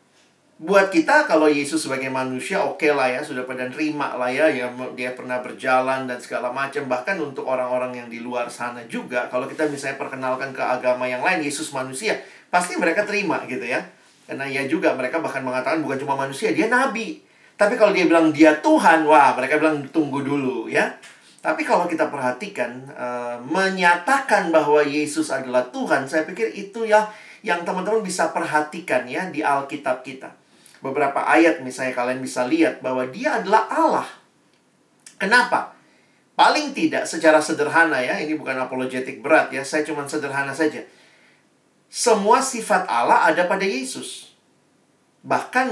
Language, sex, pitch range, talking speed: Indonesian, male, 130-185 Hz, 160 wpm